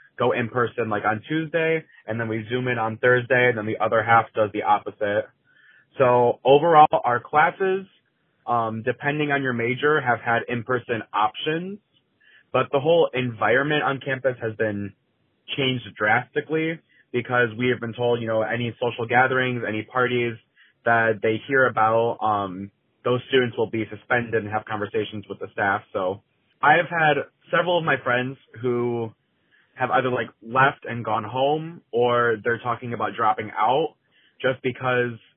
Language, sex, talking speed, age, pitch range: English, male, 165 wpm, 20-39, 115-135 Hz